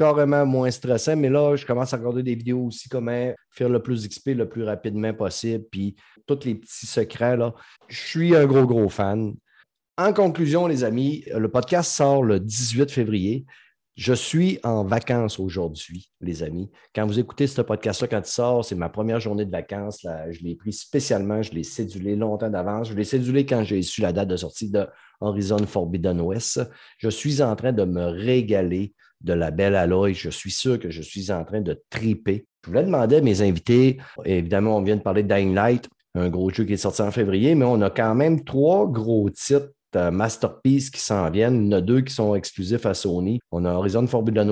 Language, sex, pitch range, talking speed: French, male, 100-125 Hz, 215 wpm